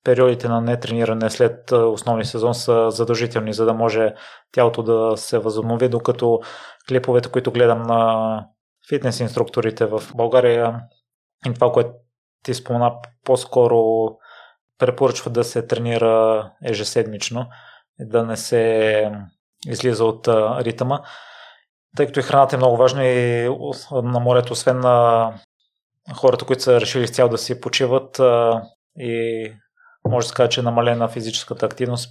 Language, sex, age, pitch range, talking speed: Bulgarian, male, 20-39, 115-125 Hz, 135 wpm